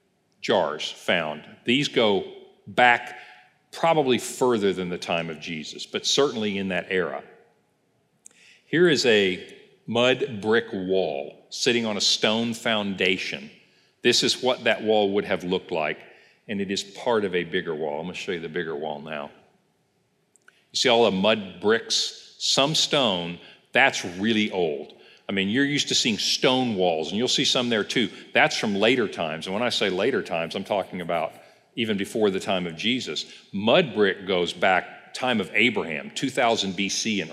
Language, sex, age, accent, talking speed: English, male, 50-69, American, 175 wpm